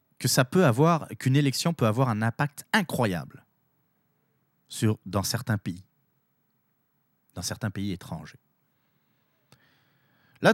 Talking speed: 115 wpm